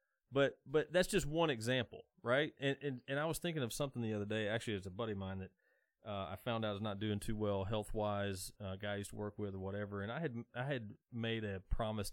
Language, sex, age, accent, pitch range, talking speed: English, male, 30-49, American, 105-140 Hz, 260 wpm